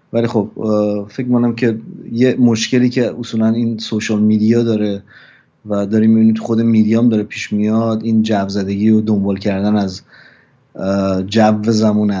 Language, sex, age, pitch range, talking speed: Persian, male, 30-49, 105-125 Hz, 145 wpm